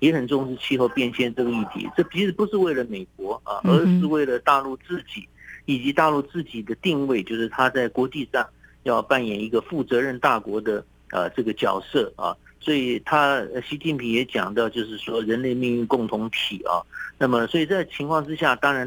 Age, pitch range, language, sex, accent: 50-69, 120-160 Hz, English, male, Chinese